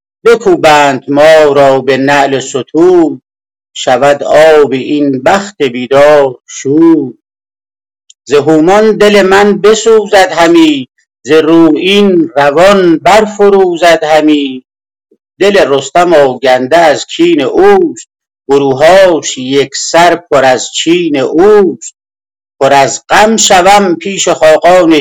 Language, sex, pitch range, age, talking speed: Persian, male, 140-205 Hz, 50-69, 105 wpm